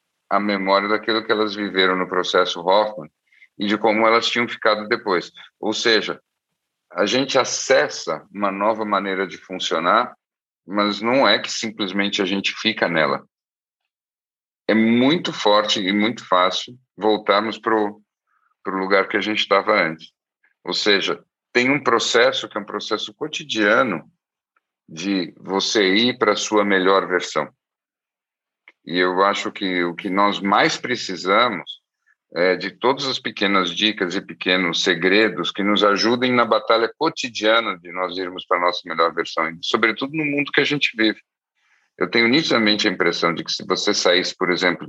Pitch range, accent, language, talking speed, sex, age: 90-110 Hz, Brazilian, Portuguese, 160 wpm, male, 50-69